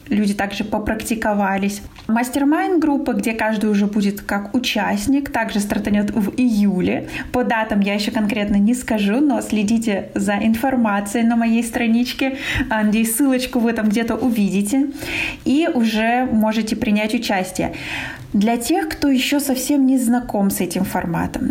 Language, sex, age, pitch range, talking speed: Russian, female, 20-39, 215-270 Hz, 140 wpm